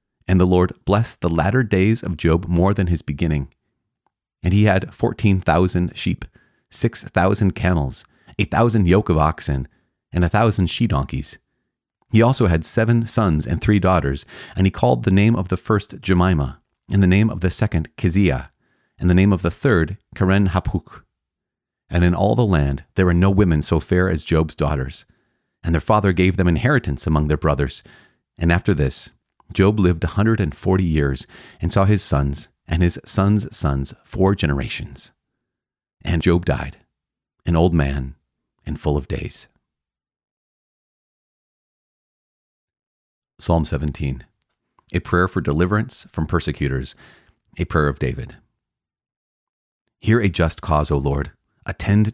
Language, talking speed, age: English, 150 wpm, 40-59